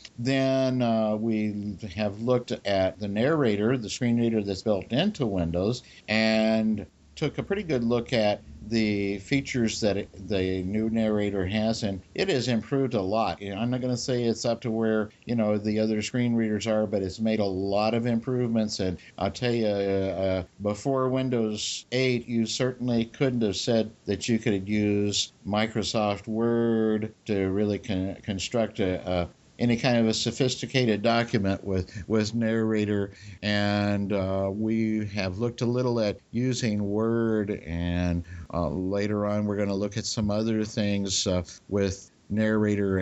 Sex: male